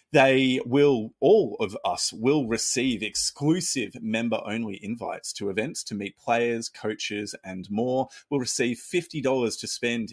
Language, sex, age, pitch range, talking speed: English, male, 30-49, 100-120 Hz, 135 wpm